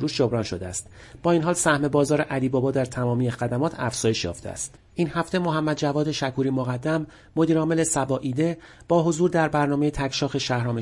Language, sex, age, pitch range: Persian, male, 40-59, 125-165 Hz